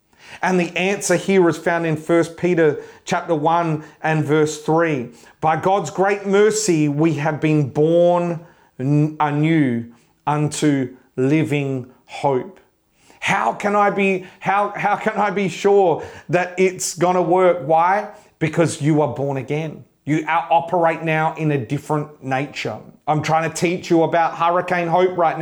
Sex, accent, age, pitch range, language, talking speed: male, Australian, 30-49, 150-180 Hz, English, 150 wpm